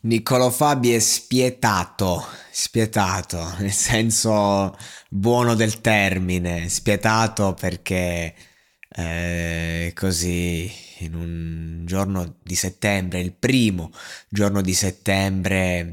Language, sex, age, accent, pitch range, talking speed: Italian, male, 20-39, native, 95-120 Hz, 90 wpm